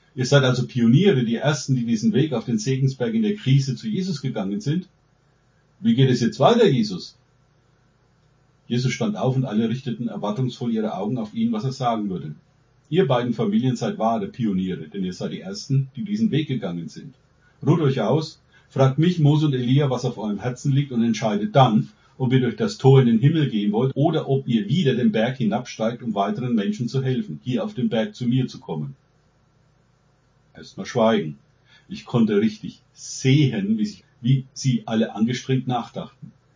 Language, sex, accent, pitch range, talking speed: German, male, German, 120-150 Hz, 185 wpm